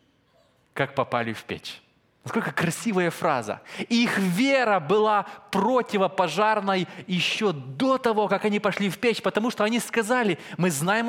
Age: 20-39